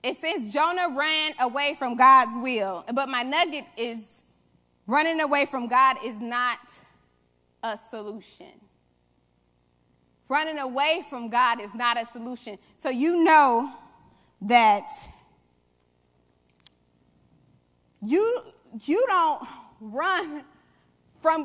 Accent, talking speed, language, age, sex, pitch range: American, 105 wpm, English, 20-39, female, 235-330 Hz